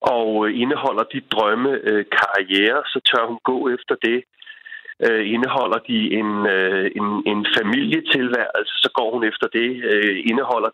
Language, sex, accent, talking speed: Danish, male, native, 150 wpm